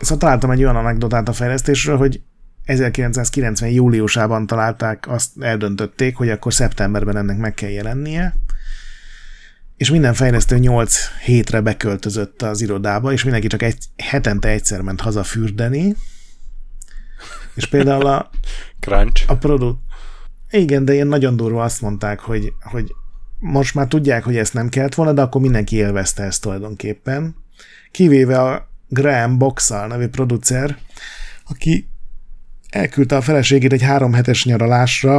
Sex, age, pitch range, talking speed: male, 30-49, 105-135 Hz, 135 wpm